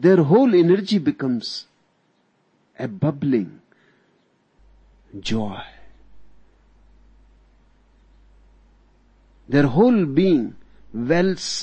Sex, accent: male, native